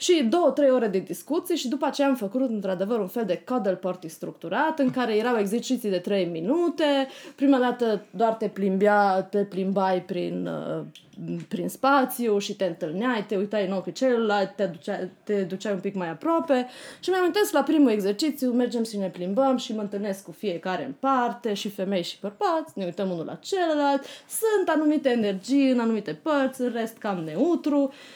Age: 20-39